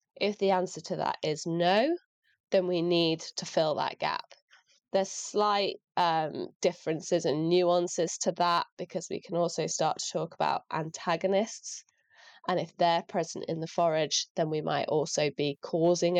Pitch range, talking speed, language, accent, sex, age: 165-195 Hz, 165 wpm, English, British, female, 20-39